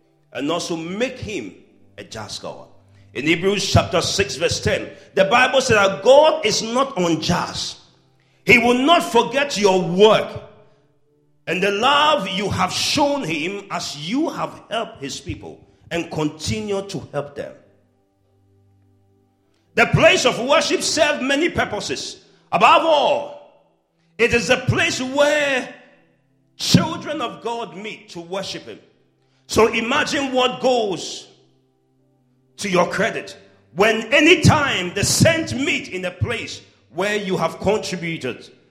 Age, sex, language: 50-69, male, English